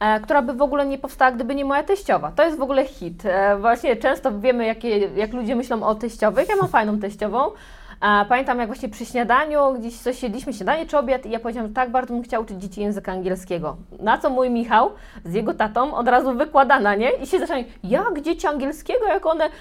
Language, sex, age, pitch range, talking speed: Polish, female, 20-39, 210-265 Hz, 215 wpm